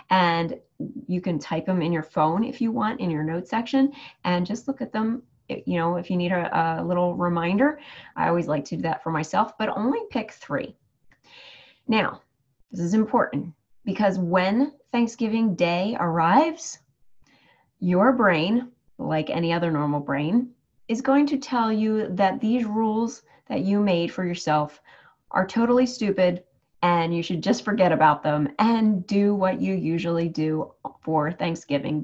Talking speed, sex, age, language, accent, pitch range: 165 wpm, female, 30-49, English, American, 170-235 Hz